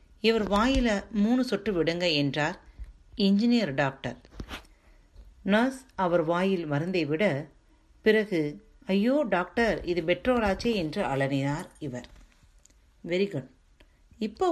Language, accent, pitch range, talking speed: Tamil, native, 140-210 Hz, 100 wpm